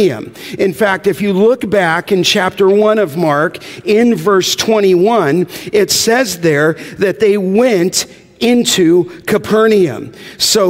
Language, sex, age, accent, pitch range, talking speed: English, male, 50-69, American, 185-225 Hz, 130 wpm